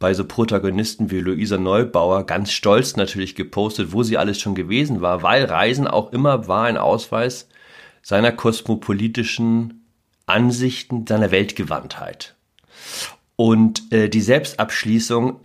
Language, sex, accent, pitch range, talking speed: German, male, German, 105-130 Hz, 125 wpm